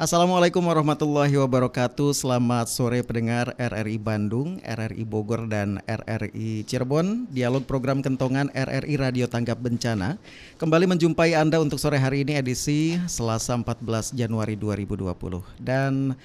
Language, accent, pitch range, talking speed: Indonesian, native, 115-140 Hz, 120 wpm